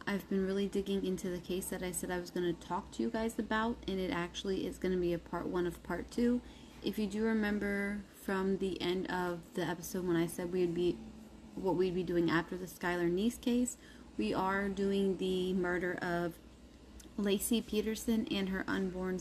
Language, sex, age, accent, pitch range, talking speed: English, female, 20-39, American, 180-220 Hz, 210 wpm